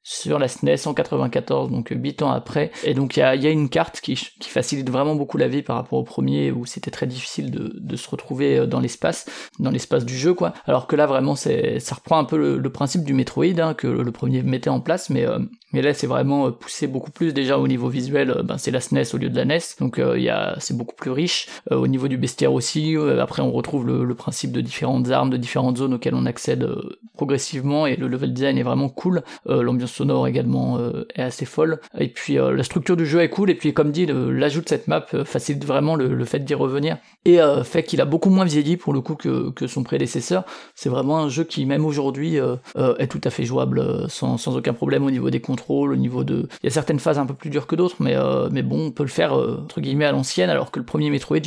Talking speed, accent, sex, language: 270 wpm, French, male, French